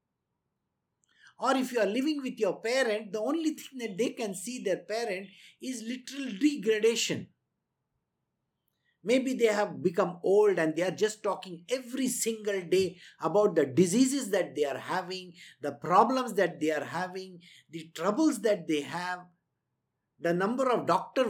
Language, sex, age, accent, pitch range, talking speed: English, male, 50-69, Indian, 175-255 Hz, 155 wpm